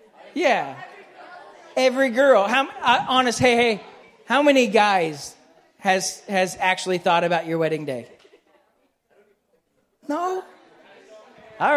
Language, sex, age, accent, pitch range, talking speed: English, male, 30-49, American, 180-230 Hz, 105 wpm